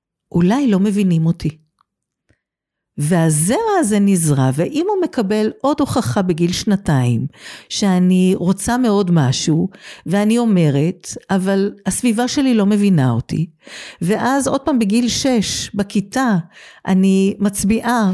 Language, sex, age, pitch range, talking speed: Hebrew, female, 50-69, 160-215 Hz, 115 wpm